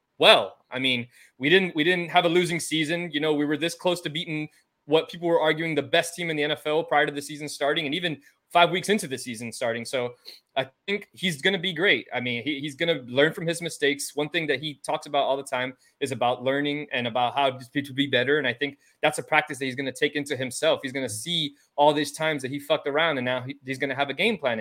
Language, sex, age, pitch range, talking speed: English, male, 20-39, 130-160 Hz, 270 wpm